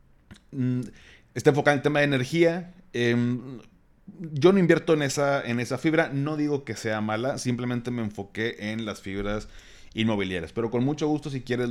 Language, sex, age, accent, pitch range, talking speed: Spanish, male, 30-49, Mexican, 95-125 Hz, 180 wpm